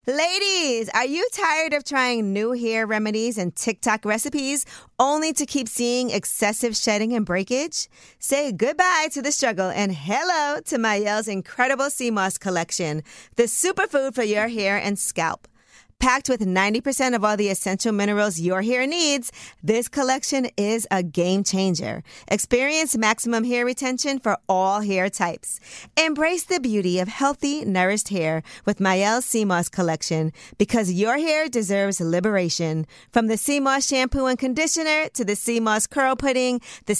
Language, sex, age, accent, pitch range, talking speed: English, female, 40-59, American, 190-265 Hz, 150 wpm